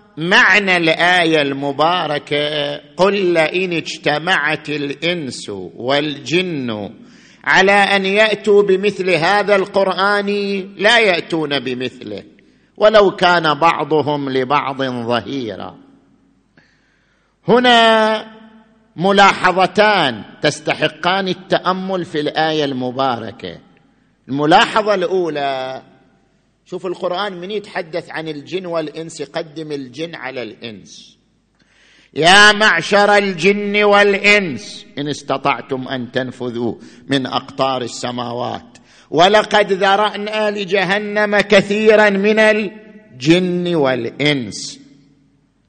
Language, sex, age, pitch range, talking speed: Arabic, male, 50-69, 145-205 Hz, 80 wpm